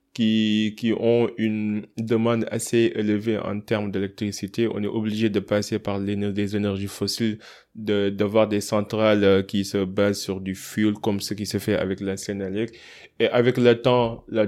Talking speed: 180 wpm